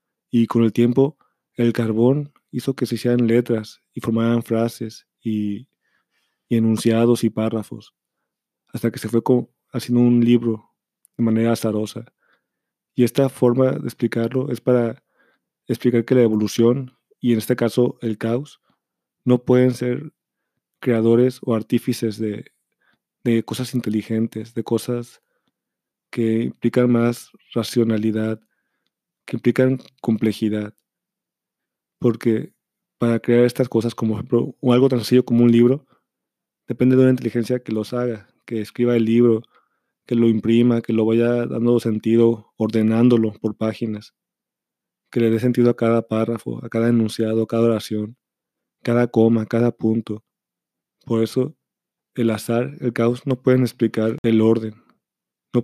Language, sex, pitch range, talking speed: Spanish, male, 115-125 Hz, 140 wpm